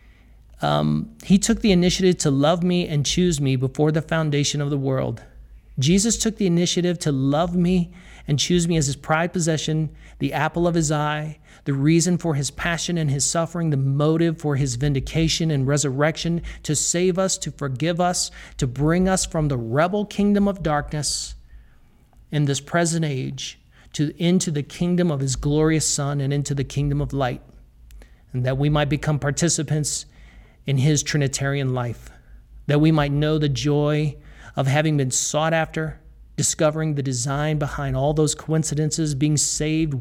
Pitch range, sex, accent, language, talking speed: 140-160 Hz, male, American, English, 170 wpm